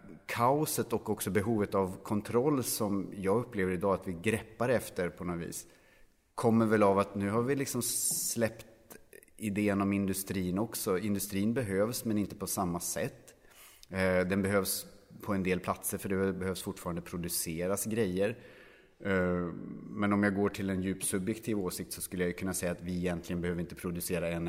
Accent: Norwegian